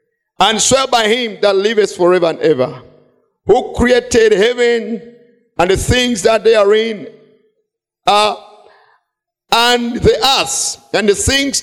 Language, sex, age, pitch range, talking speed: English, male, 50-69, 200-275 Hz, 140 wpm